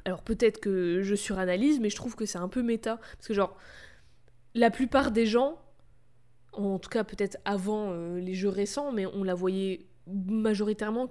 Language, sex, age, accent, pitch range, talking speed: French, female, 20-39, French, 185-230 Hz, 185 wpm